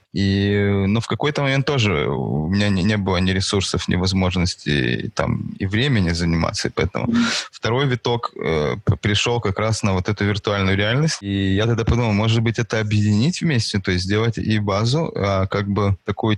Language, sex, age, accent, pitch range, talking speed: Ukrainian, male, 20-39, native, 95-115 Hz, 170 wpm